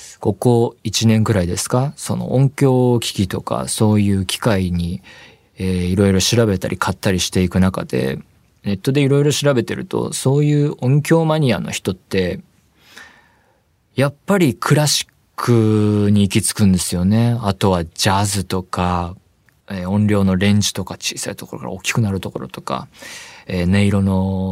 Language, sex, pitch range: Japanese, male, 95-115 Hz